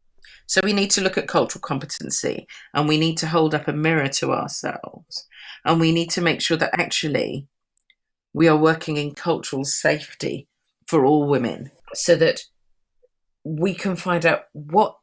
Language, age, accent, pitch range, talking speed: English, 40-59, British, 135-175 Hz, 170 wpm